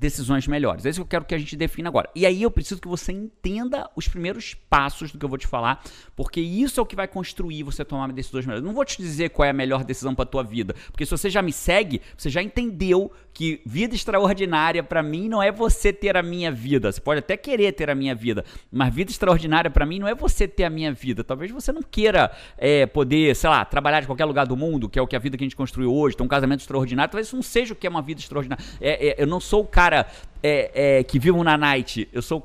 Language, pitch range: Portuguese, 140-180 Hz